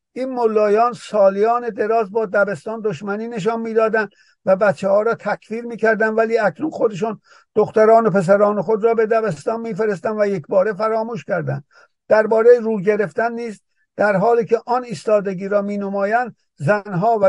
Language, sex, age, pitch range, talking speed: Persian, male, 50-69, 190-225 Hz, 155 wpm